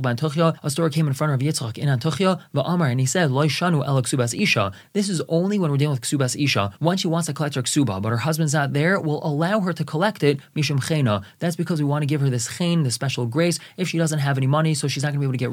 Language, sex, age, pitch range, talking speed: English, male, 20-39, 135-170 Hz, 260 wpm